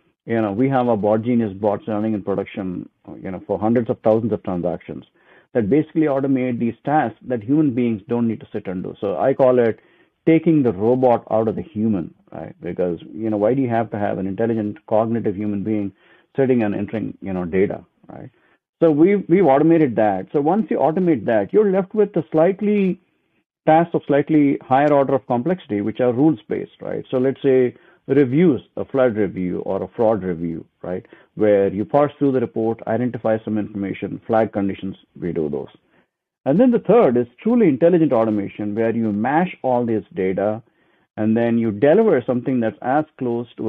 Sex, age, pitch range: male, 50-69, 105-135 Hz